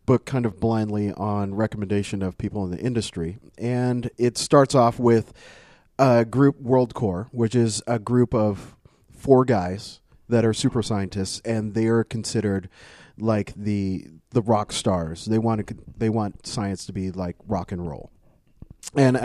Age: 30-49